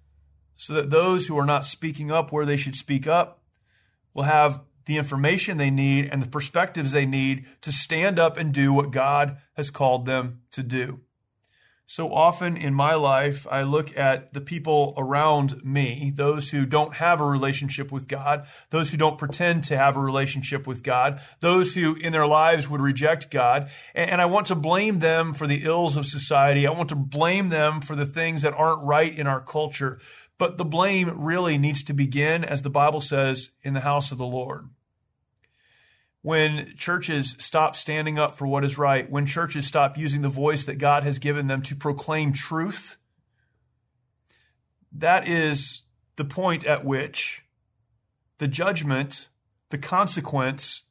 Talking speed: 175 wpm